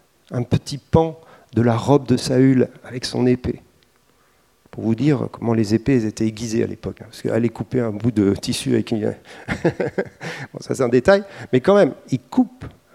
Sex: male